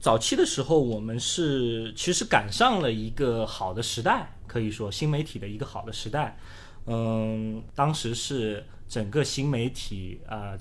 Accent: native